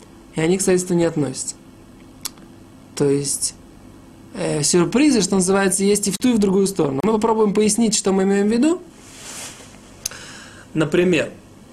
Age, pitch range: 20-39, 160-185 Hz